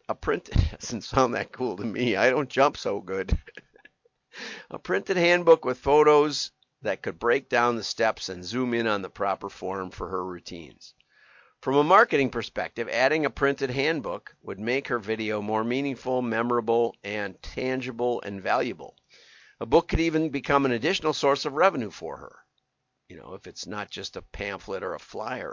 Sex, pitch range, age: male, 115-150 Hz, 50-69